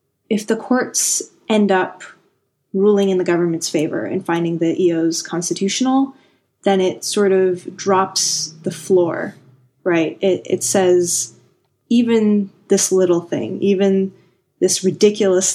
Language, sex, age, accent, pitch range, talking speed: English, female, 20-39, American, 165-195 Hz, 125 wpm